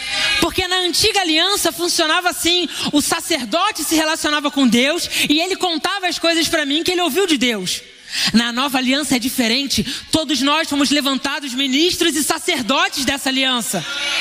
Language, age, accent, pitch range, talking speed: Portuguese, 20-39, Brazilian, 270-335 Hz, 160 wpm